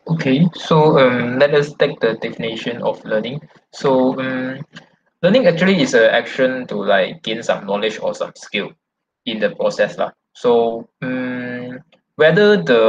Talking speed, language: 155 wpm, English